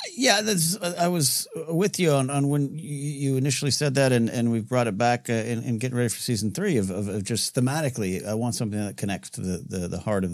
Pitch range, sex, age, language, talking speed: 95-120 Hz, male, 50-69, English, 245 wpm